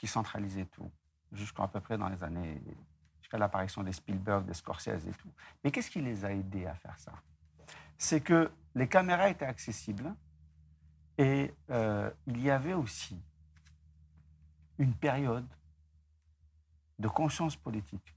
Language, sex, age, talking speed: Arabic, male, 50-69, 145 wpm